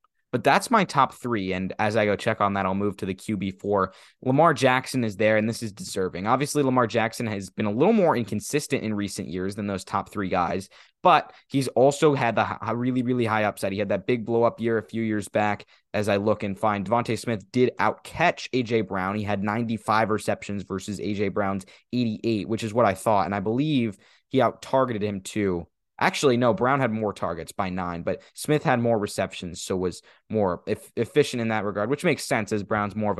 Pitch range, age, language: 100-120 Hz, 20-39, English